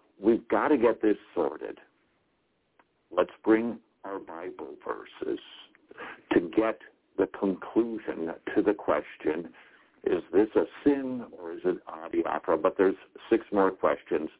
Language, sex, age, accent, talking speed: English, male, 60-79, American, 140 wpm